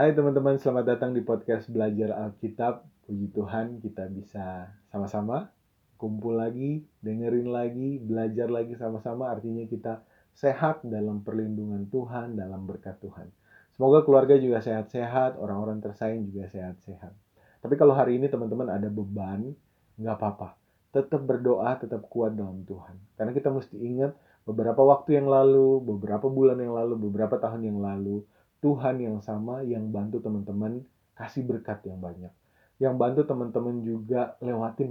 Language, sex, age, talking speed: Indonesian, male, 30-49, 145 wpm